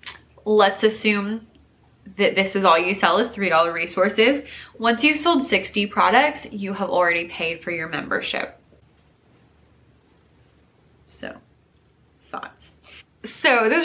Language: English